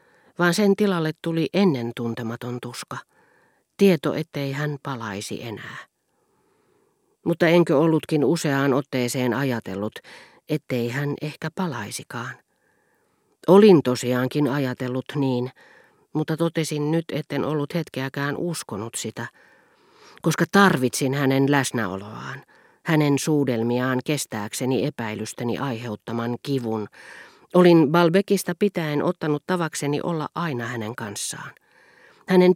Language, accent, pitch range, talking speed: Finnish, native, 120-165 Hz, 100 wpm